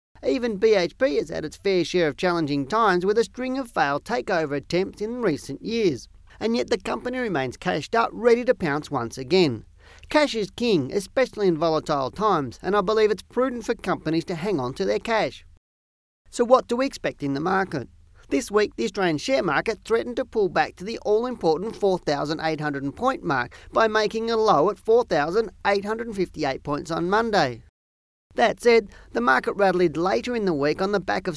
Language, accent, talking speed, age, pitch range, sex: English, Australian, 185 wpm, 40-59, 150-225 Hz, male